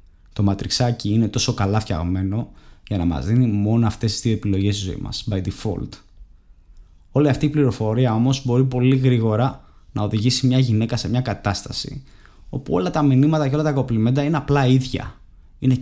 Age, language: 20-39, Greek